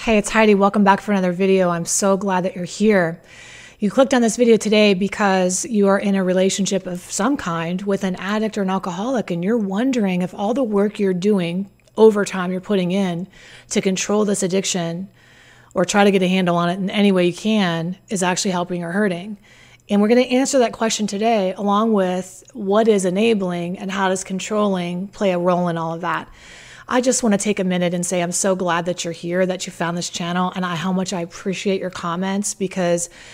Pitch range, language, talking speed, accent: 180-210 Hz, English, 220 wpm, American